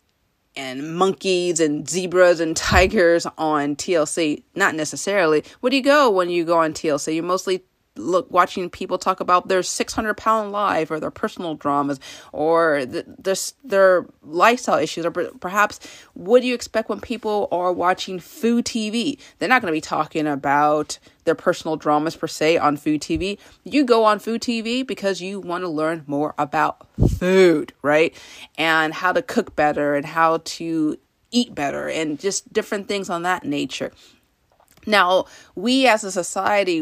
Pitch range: 155-200 Hz